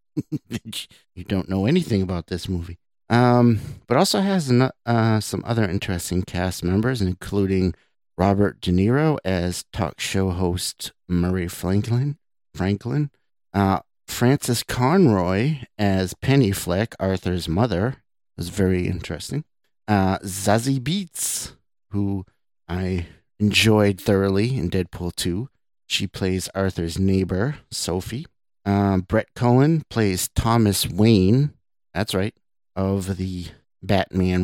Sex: male